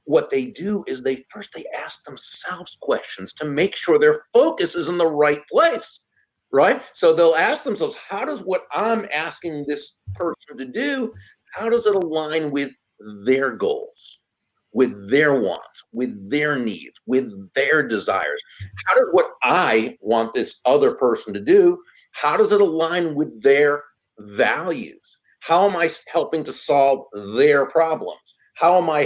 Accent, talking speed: American, 160 wpm